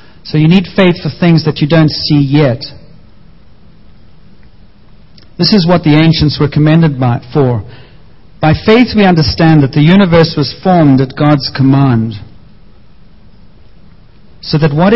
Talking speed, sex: 140 wpm, male